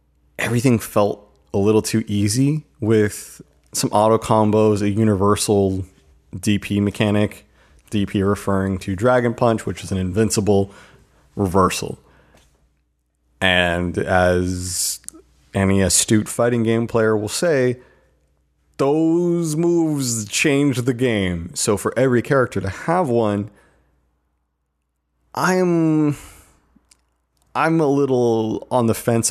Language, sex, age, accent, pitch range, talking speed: English, male, 30-49, American, 90-115 Hz, 110 wpm